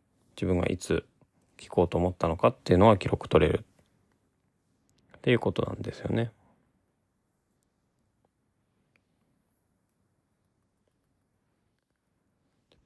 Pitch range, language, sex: 90-125 Hz, Japanese, male